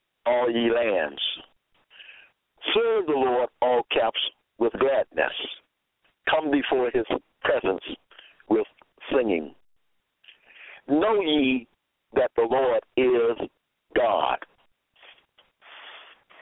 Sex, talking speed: male, 85 wpm